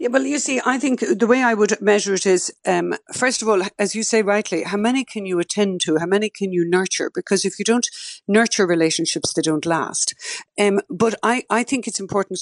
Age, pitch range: 60-79, 175-220 Hz